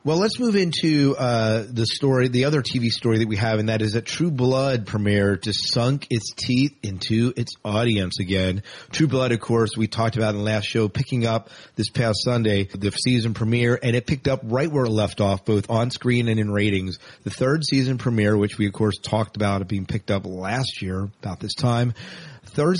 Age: 30-49